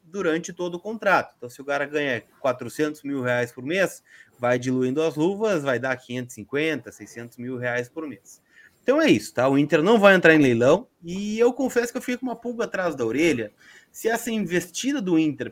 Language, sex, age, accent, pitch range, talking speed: Portuguese, male, 30-49, Brazilian, 125-185 Hz, 210 wpm